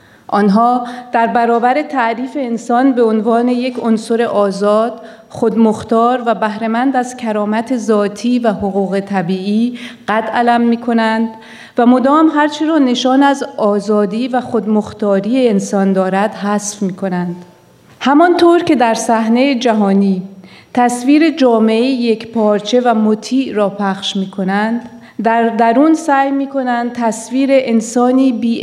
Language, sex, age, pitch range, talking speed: Persian, female, 40-59, 205-245 Hz, 125 wpm